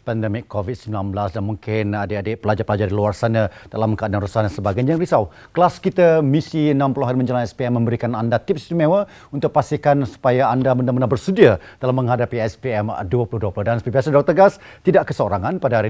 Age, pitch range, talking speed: 40-59, 110-155 Hz, 175 wpm